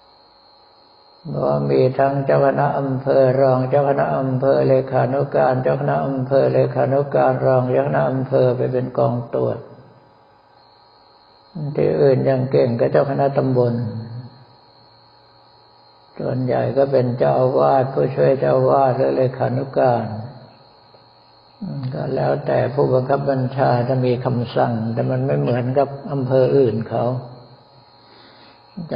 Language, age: Thai, 60-79